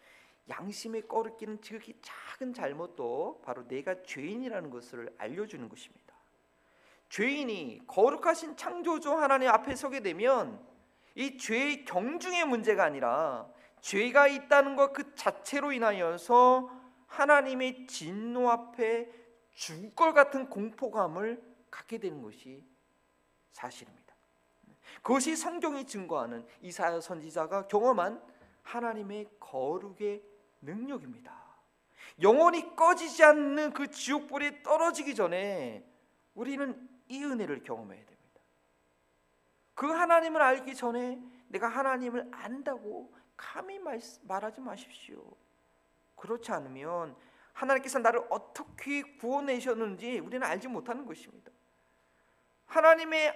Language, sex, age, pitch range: Korean, male, 40-59, 195-280 Hz